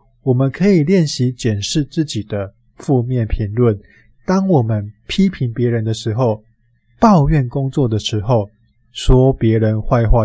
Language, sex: Chinese, male